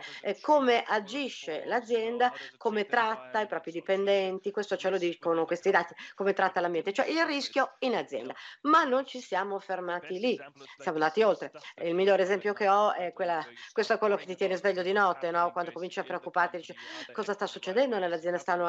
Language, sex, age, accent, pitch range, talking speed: English, female, 50-69, Italian, 170-215 Hz, 190 wpm